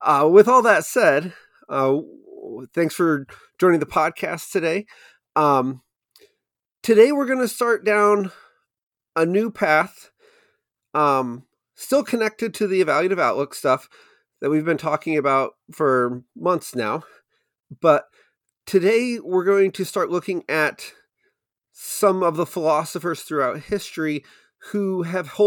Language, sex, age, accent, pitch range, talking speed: English, male, 40-59, American, 145-205 Hz, 125 wpm